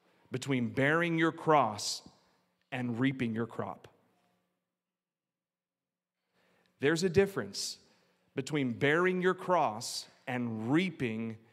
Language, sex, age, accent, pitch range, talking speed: English, male, 40-59, American, 115-165 Hz, 90 wpm